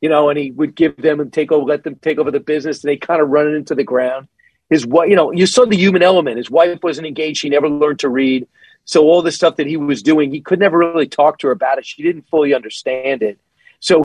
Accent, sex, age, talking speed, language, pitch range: American, male, 40-59, 280 wpm, English, 150-195 Hz